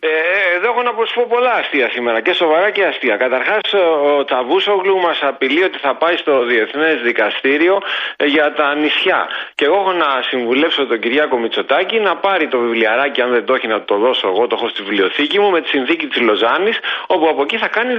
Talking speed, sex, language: 200 wpm, male, Greek